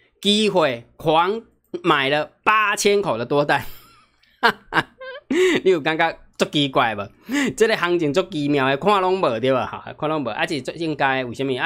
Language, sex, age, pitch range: Chinese, male, 20-39, 135-195 Hz